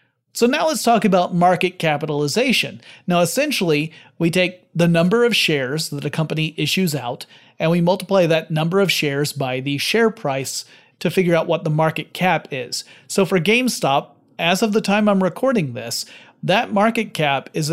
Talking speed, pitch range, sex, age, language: 180 wpm, 150-190 Hz, male, 30-49, English